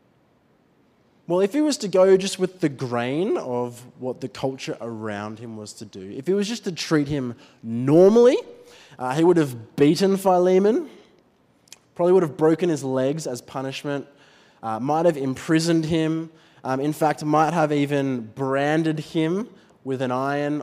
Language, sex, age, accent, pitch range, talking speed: English, male, 20-39, Australian, 130-160 Hz, 165 wpm